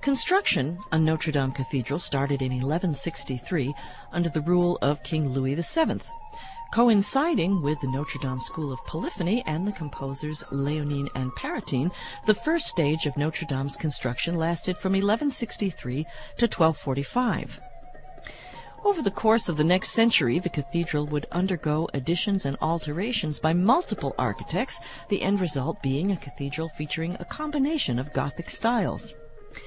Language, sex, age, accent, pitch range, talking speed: English, female, 40-59, American, 145-210 Hz, 135 wpm